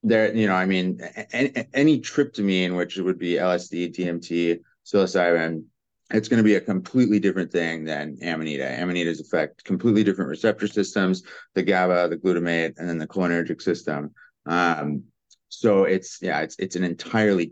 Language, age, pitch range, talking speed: English, 30-49, 85-105 Hz, 160 wpm